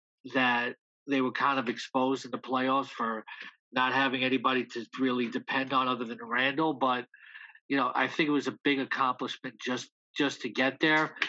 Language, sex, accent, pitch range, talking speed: English, male, American, 125-145 Hz, 185 wpm